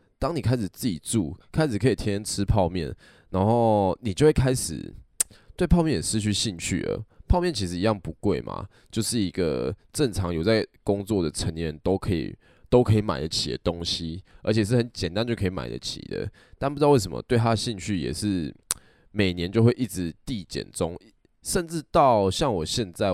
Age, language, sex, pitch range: 20-39, Chinese, male, 90-120 Hz